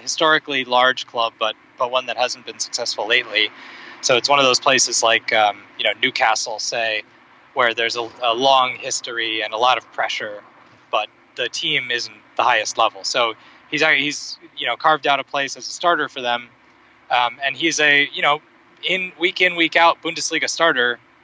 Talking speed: 190 wpm